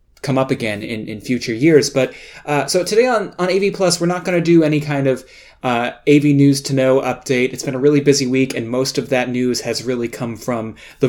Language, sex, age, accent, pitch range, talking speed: English, male, 20-39, American, 120-145 Hz, 245 wpm